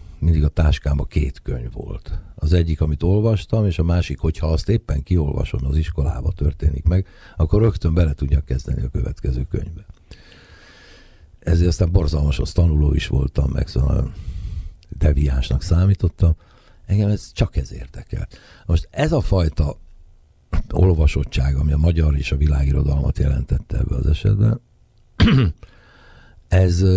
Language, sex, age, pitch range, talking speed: Hungarian, male, 60-79, 75-95 Hz, 135 wpm